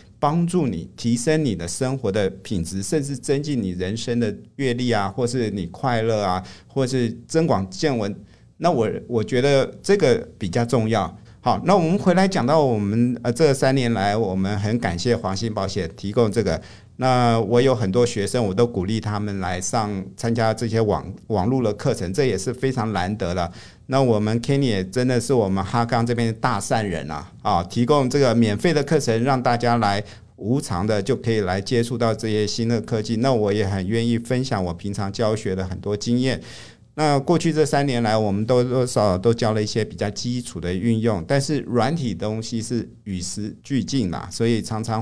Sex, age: male, 50-69